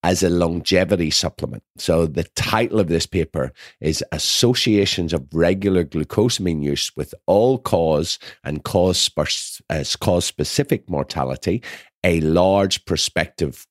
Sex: male